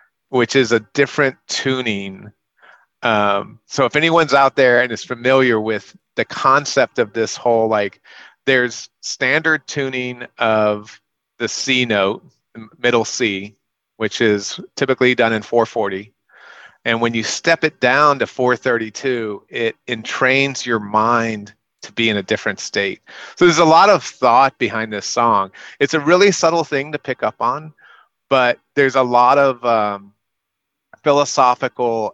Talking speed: 150 wpm